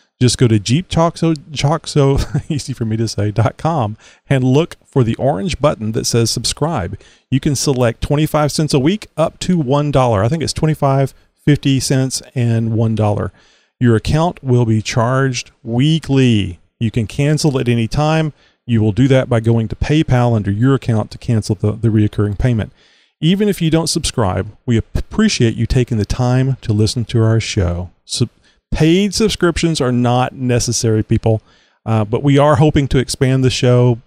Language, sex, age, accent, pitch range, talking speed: English, male, 40-59, American, 110-145 Hz, 160 wpm